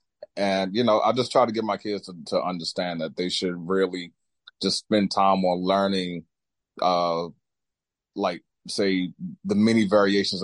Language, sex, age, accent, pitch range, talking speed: English, male, 30-49, American, 90-110 Hz, 160 wpm